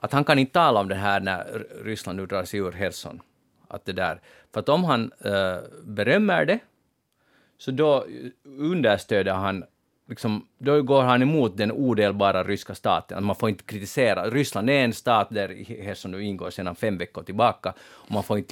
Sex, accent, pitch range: male, Finnish, 100-140 Hz